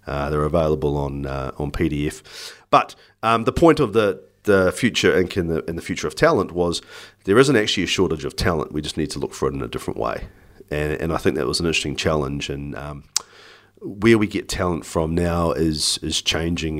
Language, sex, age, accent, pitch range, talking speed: English, male, 40-59, Australian, 70-85 Hz, 220 wpm